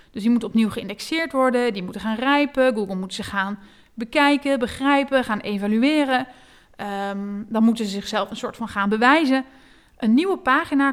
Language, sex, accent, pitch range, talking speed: Dutch, female, Dutch, 215-265 Hz, 170 wpm